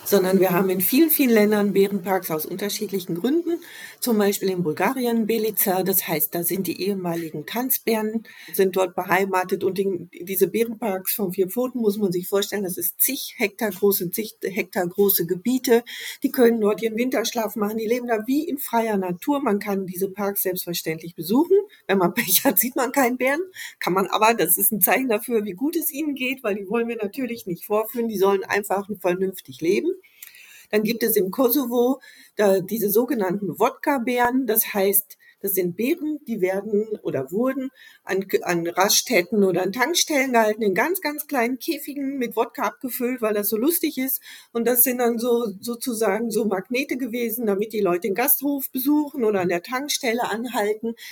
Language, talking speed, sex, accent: German, 185 wpm, female, German